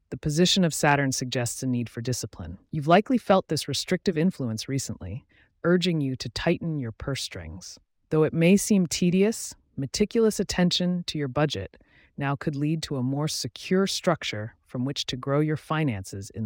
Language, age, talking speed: English, 30-49, 175 wpm